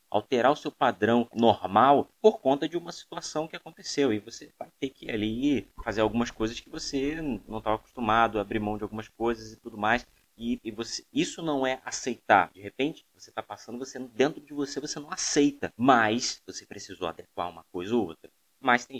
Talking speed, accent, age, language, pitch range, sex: 205 wpm, Brazilian, 20-39, Portuguese, 100-135 Hz, male